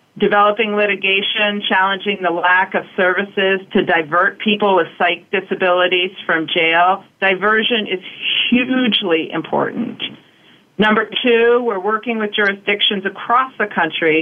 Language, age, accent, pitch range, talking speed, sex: English, 40-59, American, 185-220 Hz, 120 wpm, female